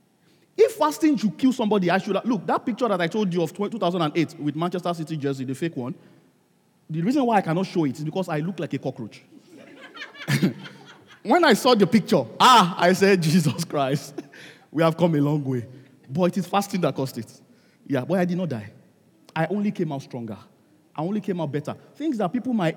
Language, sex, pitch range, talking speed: English, male, 160-225 Hz, 215 wpm